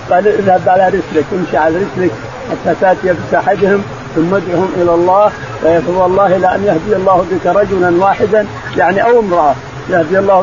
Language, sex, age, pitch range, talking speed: Arabic, male, 50-69, 170-210 Hz, 155 wpm